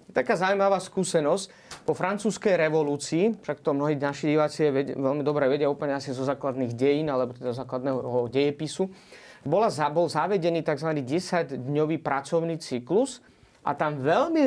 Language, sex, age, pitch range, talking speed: Slovak, male, 30-49, 150-185 Hz, 135 wpm